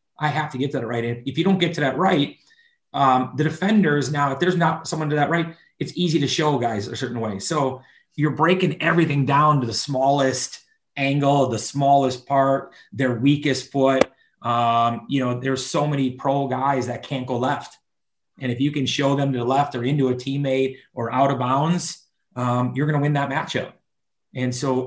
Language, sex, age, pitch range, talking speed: English, male, 30-49, 125-145 Hz, 210 wpm